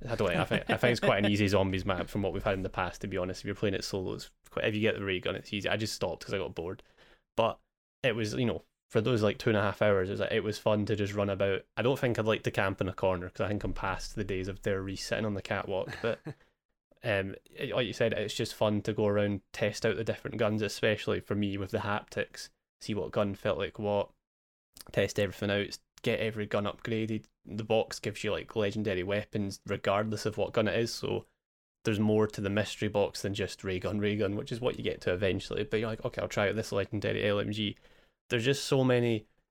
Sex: male